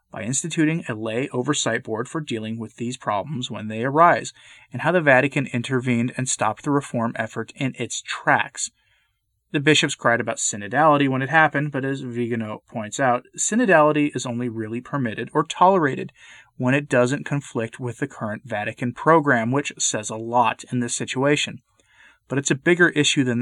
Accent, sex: American, male